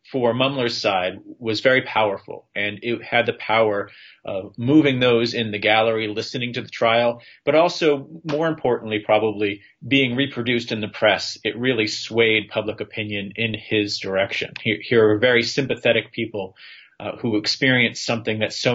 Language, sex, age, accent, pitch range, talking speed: English, male, 30-49, American, 105-125 Hz, 165 wpm